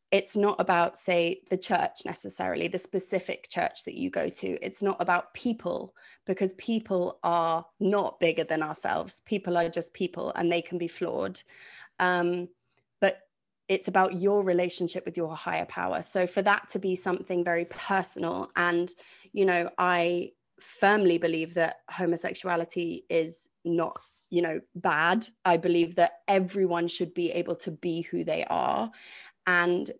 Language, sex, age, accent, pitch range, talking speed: English, female, 20-39, British, 170-195 Hz, 155 wpm